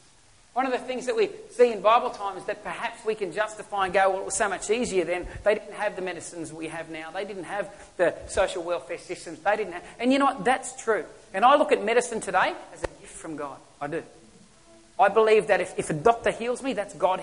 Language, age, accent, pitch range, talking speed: English, 40-59, Australian, 190-235 Hz, 245 wpm